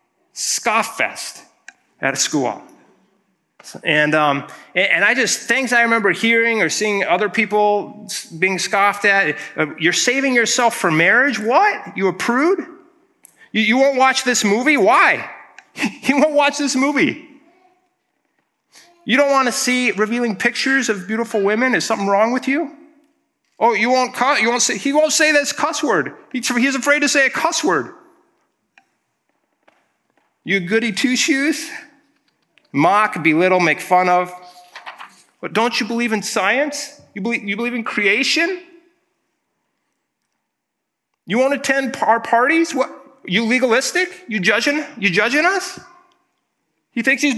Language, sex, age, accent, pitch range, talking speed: English, male, 30-49, American, 190-285 Hz, 140 wpm